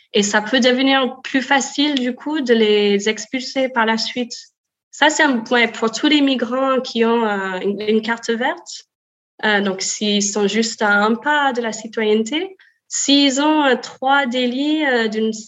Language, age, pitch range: French, 20-39, 215-265 Hz